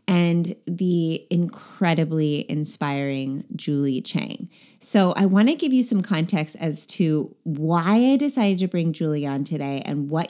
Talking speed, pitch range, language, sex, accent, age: 150 wpm, 150-205 Hz, English, female, American, 20-39